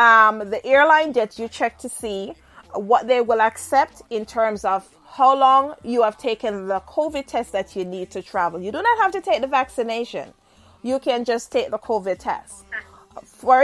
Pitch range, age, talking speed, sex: 210-270 Hz, 30-49, 195 wpm, female